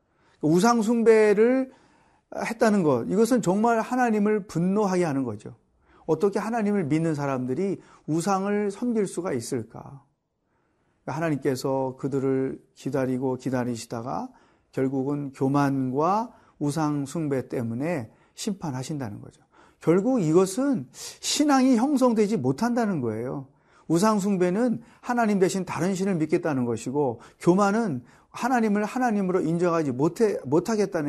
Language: Korean